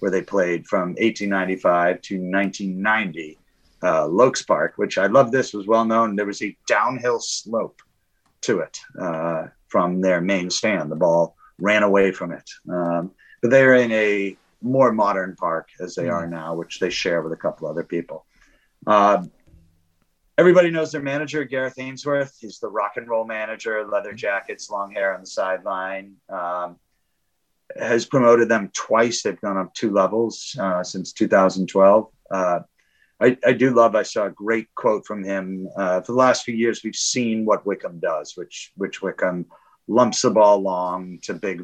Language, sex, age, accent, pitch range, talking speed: English, male, 30-49, American, 90-120 Hz, 170 wpm